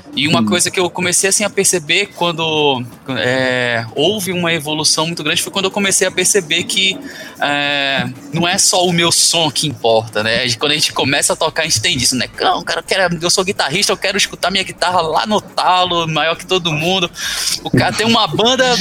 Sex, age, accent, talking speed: male, 20-39, Brazilian, 220 wpm